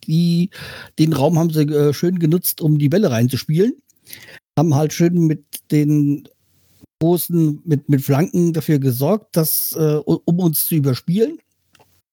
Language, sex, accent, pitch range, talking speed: German, male, German, 140-170 Hz, 145 wpm